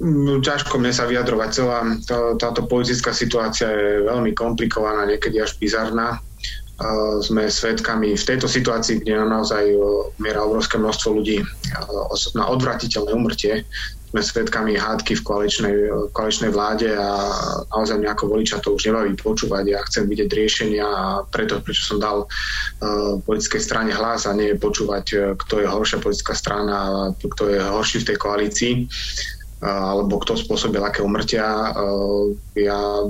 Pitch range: 100-110 Hz